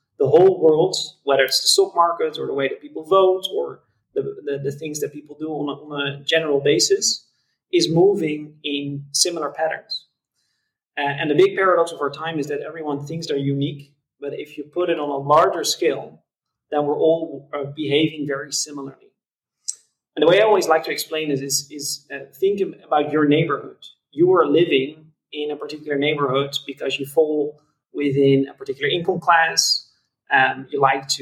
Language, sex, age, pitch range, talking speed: English, male, 30-49, 140-175 Hz, 190 wpm